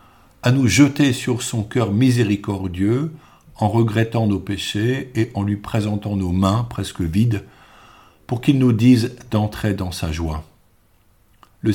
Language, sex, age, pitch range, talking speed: French, male, 50-69, 100-125 Hz, 145 wpm